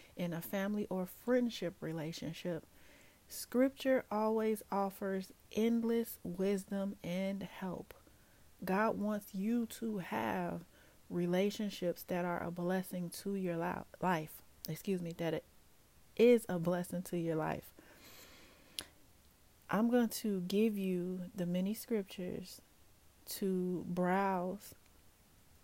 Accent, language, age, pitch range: American, English, 30-49, 165-205 Hz